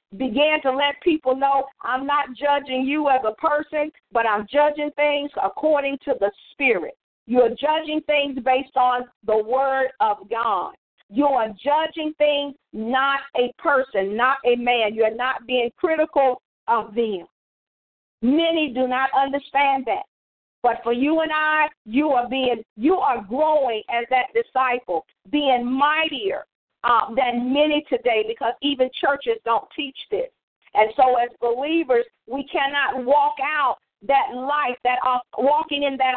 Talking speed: 155 wpm